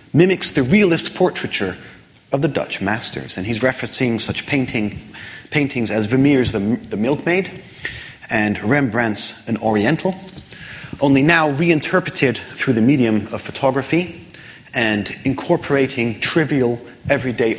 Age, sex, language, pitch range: 30-49, male, English, 105-140 Hz